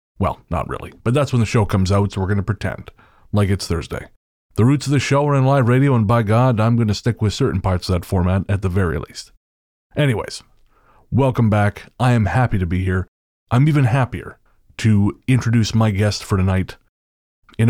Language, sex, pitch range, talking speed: English, male, 95-120 Hz, 215 wpm